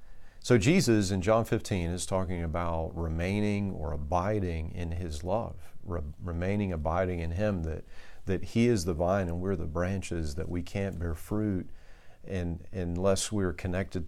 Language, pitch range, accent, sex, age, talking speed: English, 85-105 Hz, American, male, 50-69, 160 wpm